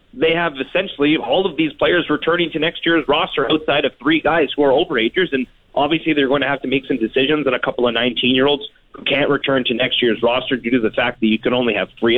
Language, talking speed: English, 250 wpm